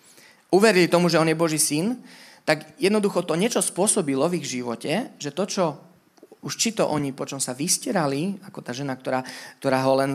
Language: Slovak